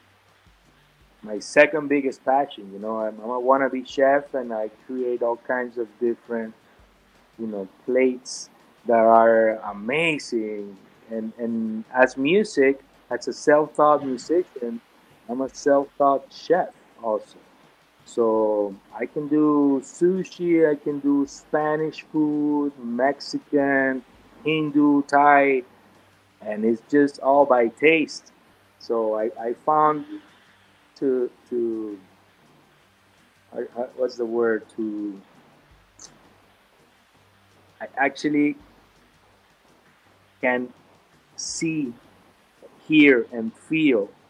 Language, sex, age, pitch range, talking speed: English, male, 30-49, 115-150 Hz, 100 wpm